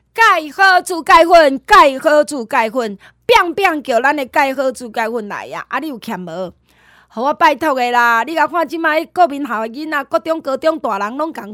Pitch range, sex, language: 230-330 Hz, female, Chinese